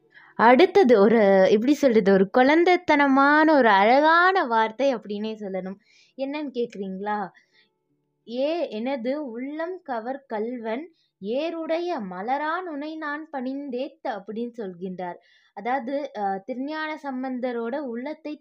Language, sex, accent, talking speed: Tamil, female, native, 100 wpm